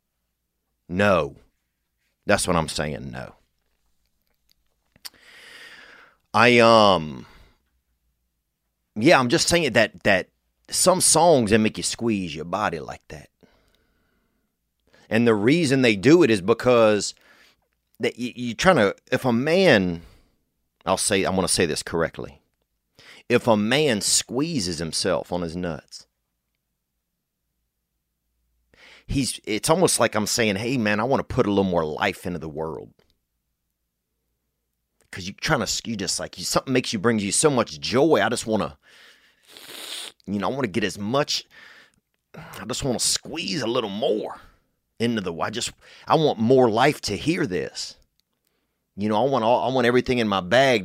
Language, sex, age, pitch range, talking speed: English, male, 30-49, 75-120 Hz, 155 wpm